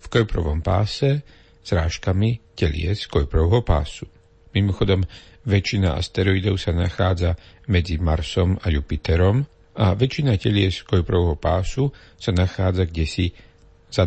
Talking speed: 105 wpm